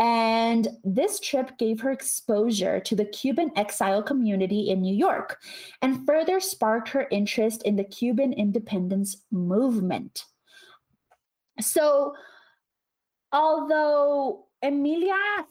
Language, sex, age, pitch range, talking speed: English, female, 30-49, 205-280 Hz, 105 wpm